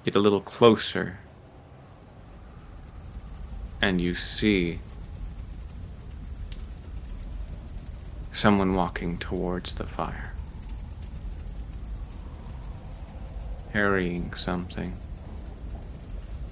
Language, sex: English, male